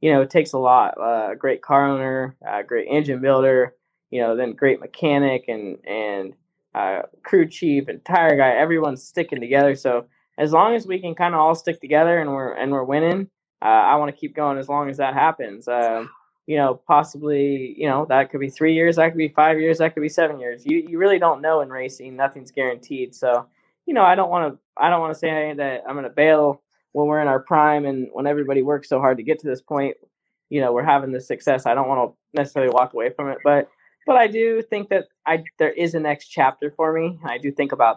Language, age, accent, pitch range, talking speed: English, 10-29, American, 130-160 Hz, 240 wpm